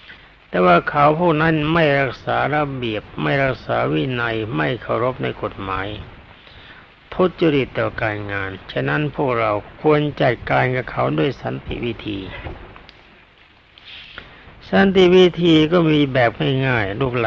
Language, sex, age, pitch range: Thai, male, 60-79, 115-155 Hz